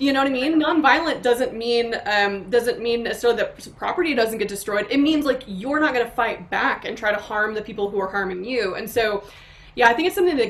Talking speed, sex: 250 wpm, female